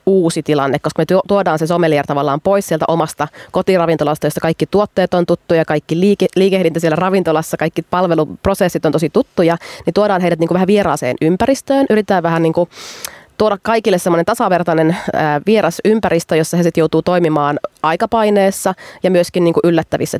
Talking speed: 155 wpm